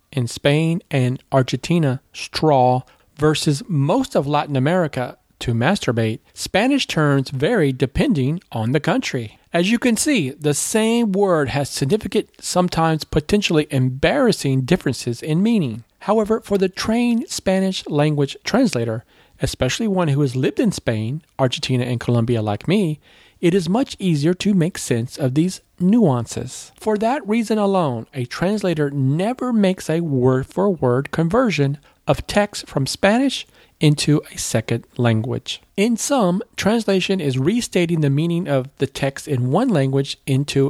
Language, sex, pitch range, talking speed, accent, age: English, male, 130-190 Hz, 140 wpm, American, 40-59